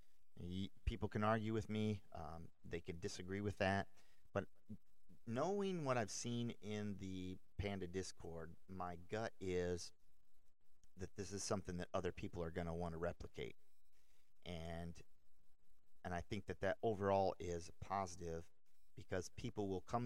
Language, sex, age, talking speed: English, male, 40-59, 145 wpm